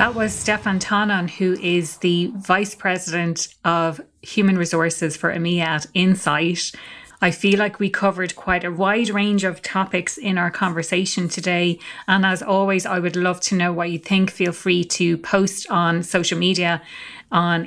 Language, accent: English, Irish